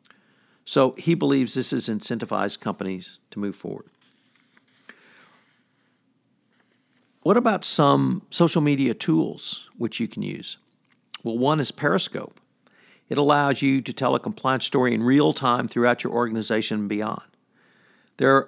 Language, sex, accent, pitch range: English, male, American, 110-140 Hz